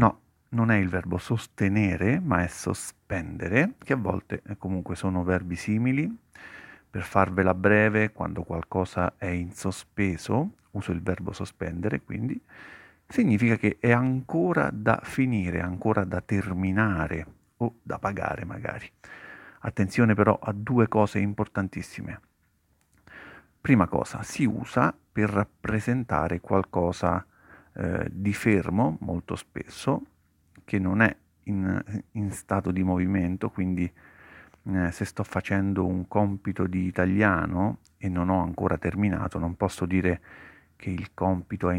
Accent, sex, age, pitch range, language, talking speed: native, male, 40-59, 90-105 Hz, Italian, 130 wpm